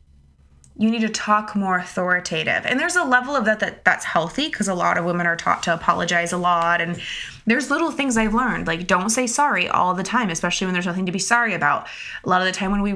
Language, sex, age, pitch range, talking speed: English, female, 20-39, 175-220 Hz, 250 wpm